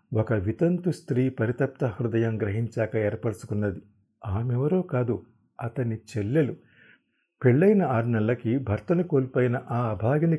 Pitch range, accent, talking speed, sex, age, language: 110-135 Hz, native, 105 wpm, male, 50-69, Telugu